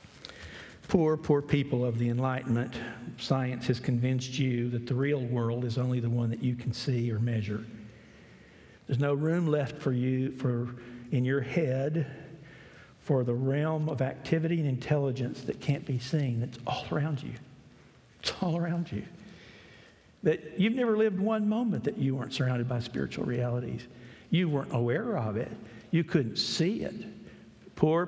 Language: English